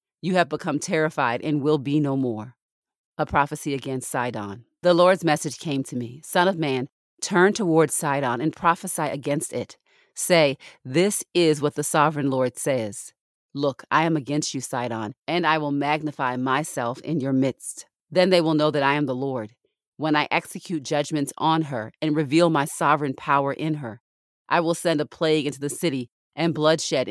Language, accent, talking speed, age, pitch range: English, American, 185 wpm, 40-59, 135-165 Hz